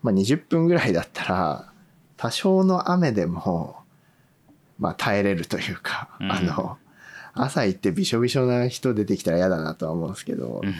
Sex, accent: male, native